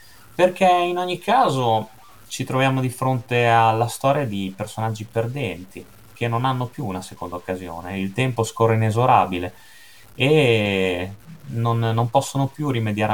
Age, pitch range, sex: 20-39, 100-135 Hz, male